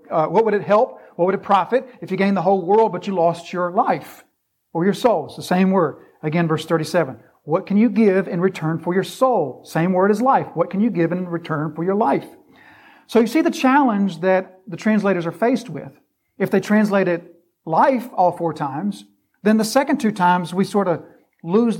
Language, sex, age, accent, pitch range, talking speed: English, male, 40-59, American, 175-220 Hz, 215 wpm